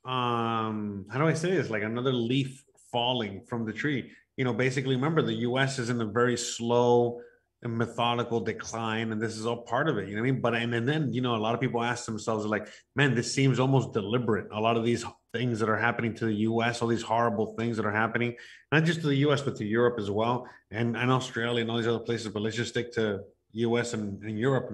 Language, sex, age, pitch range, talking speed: English, male, 30-49, 115-130 Hz, 245 wpm